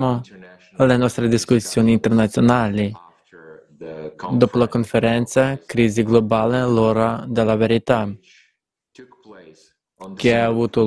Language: Italian